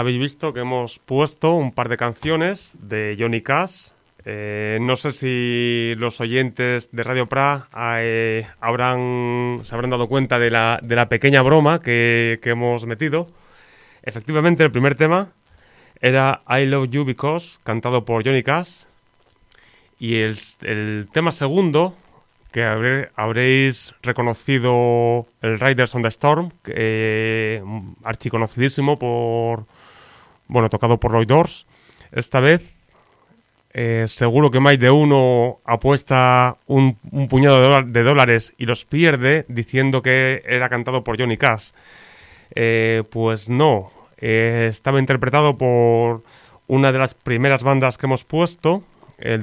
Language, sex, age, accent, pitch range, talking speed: Spanish, male, 30-49, Spanish, 115-140 Hz, 140 wpm